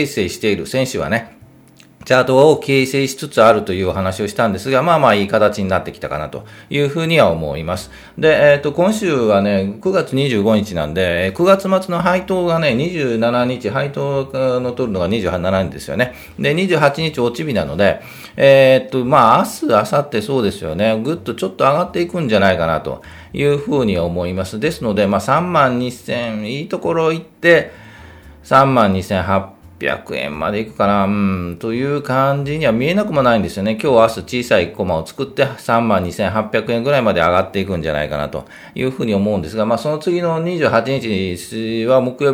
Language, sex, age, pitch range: Japanese, male, 40-59, 95-140 Hz